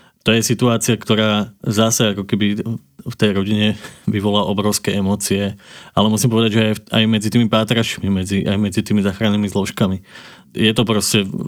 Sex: male